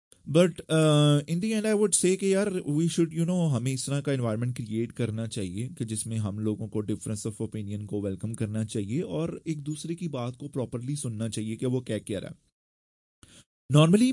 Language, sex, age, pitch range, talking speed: Persian, male, 30-49, 110-160 Hz, 200 wpm